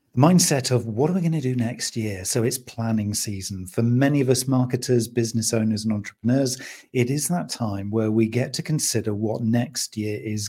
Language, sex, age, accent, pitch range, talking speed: English, male, 40-59, British, 110-135 Hz, 205 wpm